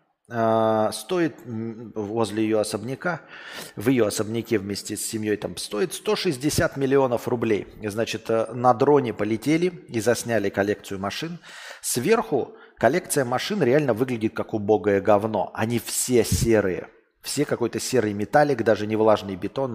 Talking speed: 130 wpm